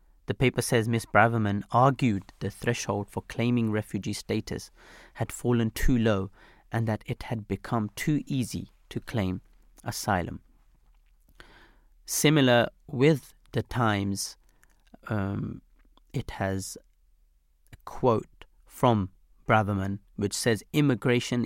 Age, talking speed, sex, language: 30-49, 110 wpm, male, English